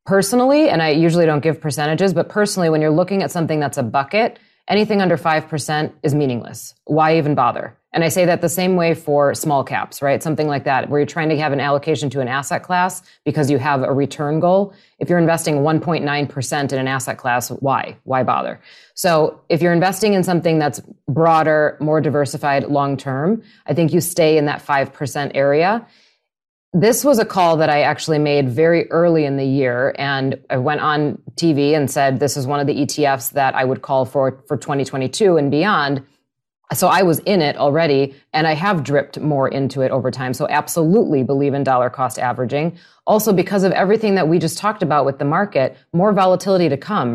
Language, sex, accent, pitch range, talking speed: English, female, American, 140-175 Hz, 205 wpm